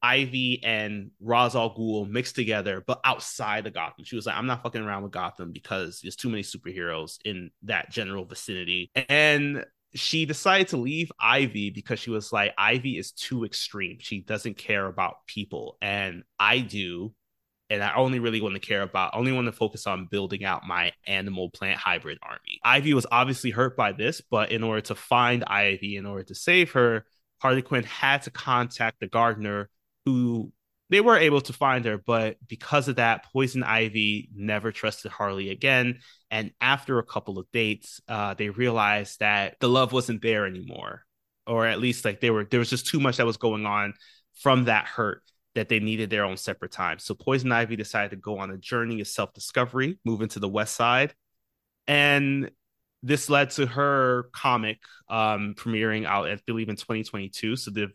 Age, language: 20-39, English